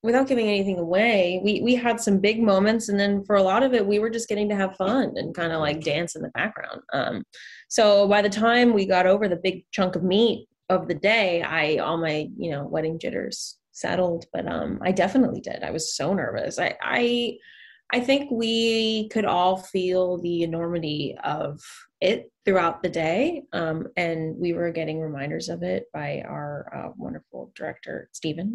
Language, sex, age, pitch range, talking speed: English, female, 20-39, 175-235 Hz, 200 wpm